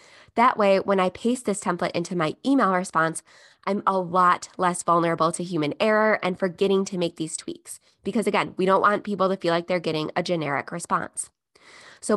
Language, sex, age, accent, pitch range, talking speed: English, female, 20-39, American, 175-215 Hz, 195 wpm